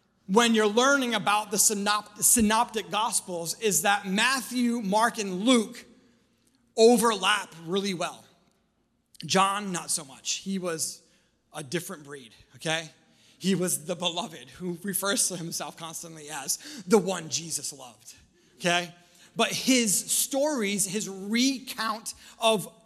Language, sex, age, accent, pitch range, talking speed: English, male, 30-49, American, 175-225 Hz, 125 wpm